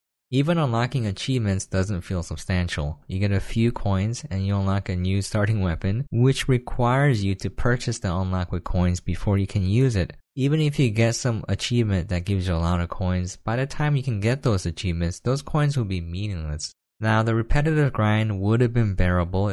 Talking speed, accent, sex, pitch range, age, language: 205 wpm, American, male, 85-115 Hz, 20-39, English